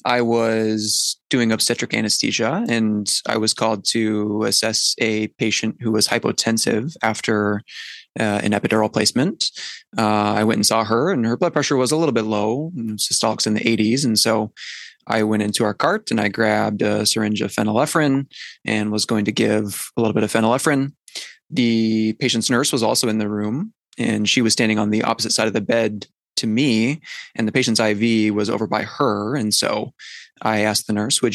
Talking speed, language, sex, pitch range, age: 190 wpm, English, male, 105-115 Hz, 20-39